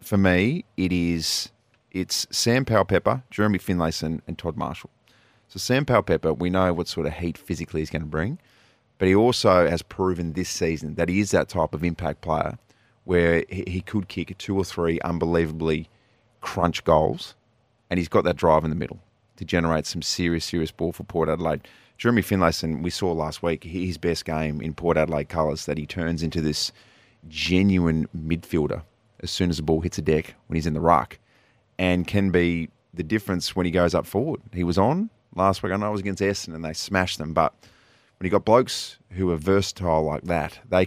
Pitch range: 85-105 Hz